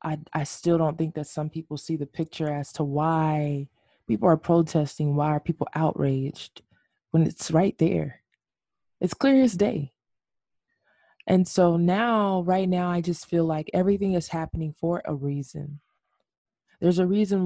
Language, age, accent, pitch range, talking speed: English, 20-39, American, 145-185 Hz, 160 wpm